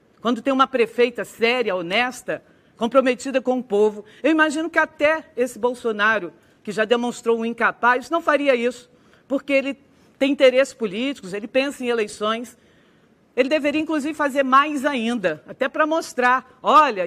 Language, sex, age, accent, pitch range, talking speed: Portuguese, female, 40-59, Brazilian, 235-285 Hz, 150 wpm